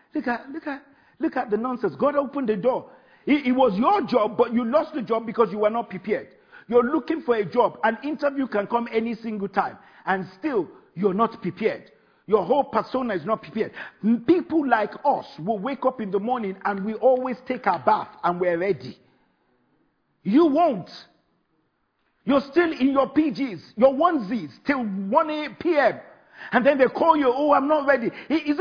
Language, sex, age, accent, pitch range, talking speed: English, male, 50-69, Nigerian, 225-300 Hz, 190 wpm